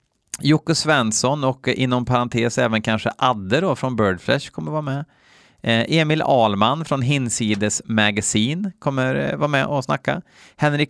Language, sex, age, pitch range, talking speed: Swedish, male, 30-49, 110-140 Hz, 145 wpm